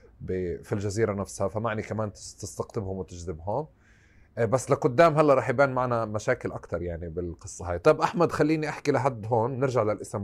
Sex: male